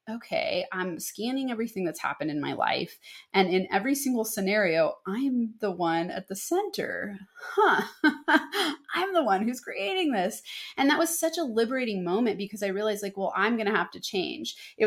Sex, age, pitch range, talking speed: female, 30-49, 175-235 Hz, 185 wpm